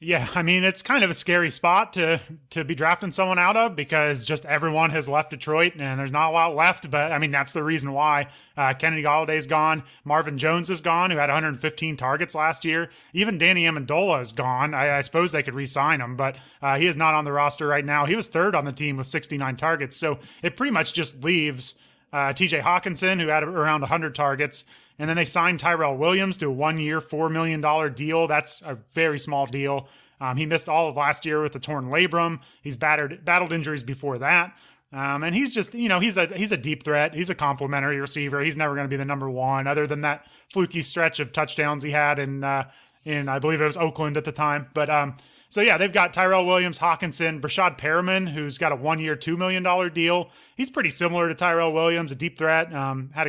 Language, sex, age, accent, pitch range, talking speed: English, male, 30-49, American, 145-170 Hz, 230 wpm